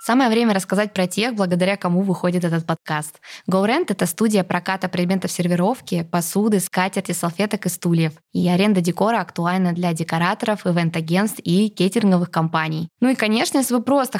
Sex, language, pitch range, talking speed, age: female, Russian, 175-210 Hz, 155 wpm, 20-39